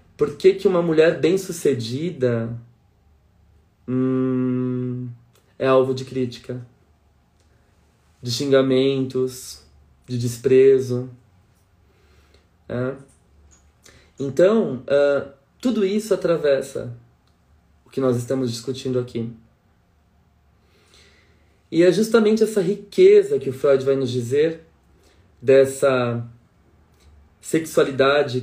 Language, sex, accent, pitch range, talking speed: Portuguese, male, Brazilian, 110-140 Hz, 80 wpm